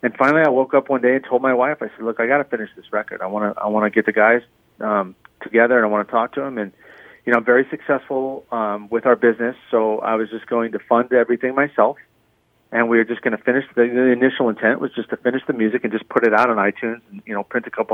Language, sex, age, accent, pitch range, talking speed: English, male, 30-49, American, 105-125 Hz, 290 wpm